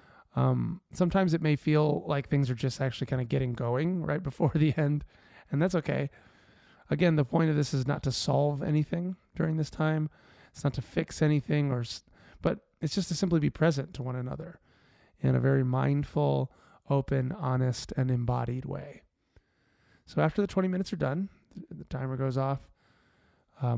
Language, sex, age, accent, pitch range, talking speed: English, male, 20-39, American, 125-155 Hz, 180 wpm